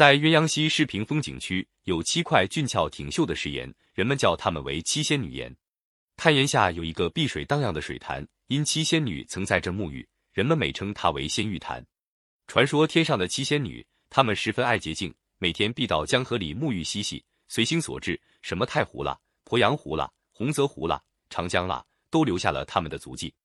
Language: Chinese